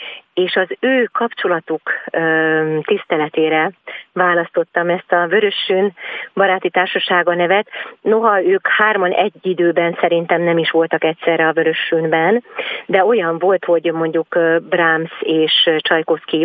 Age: 40-59